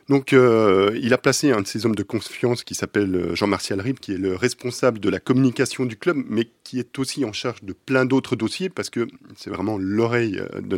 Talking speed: 225 wpm